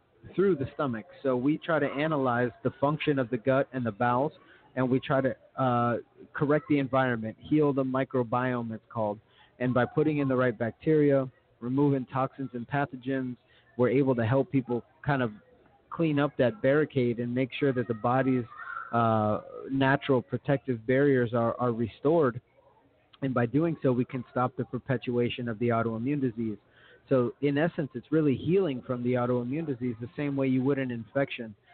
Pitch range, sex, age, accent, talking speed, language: 120-135 Hz, male, 30-49, American, 180 wpm, English